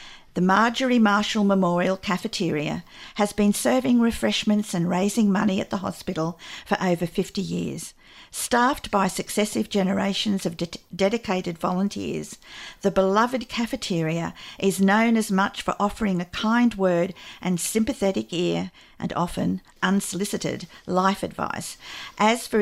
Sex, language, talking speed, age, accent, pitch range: female, English, 125 wpm, 50-69, Australian, 185-225 Hz